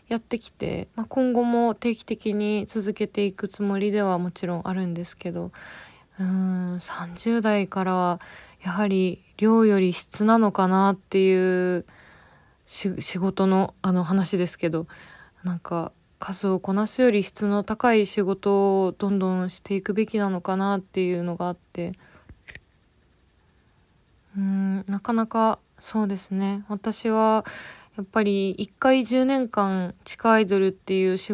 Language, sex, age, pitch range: Japanese, female, 20-39, 185-210 Hz